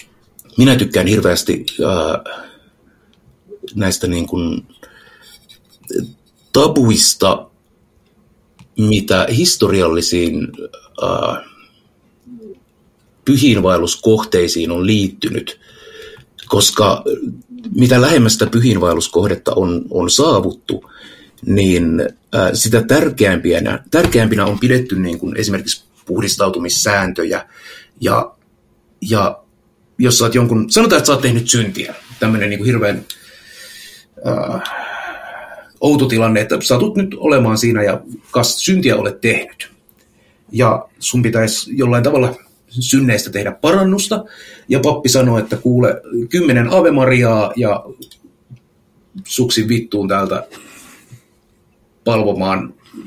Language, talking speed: Finnish, 90 wpm